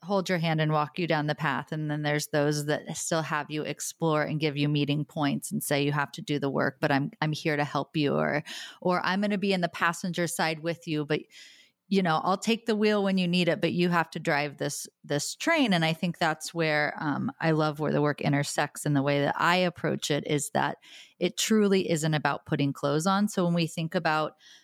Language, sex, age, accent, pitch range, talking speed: English, female, 30-49, American, 150-175 Hz, 250 wpm